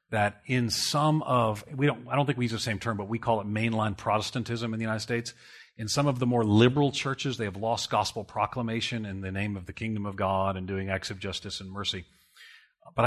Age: 40-59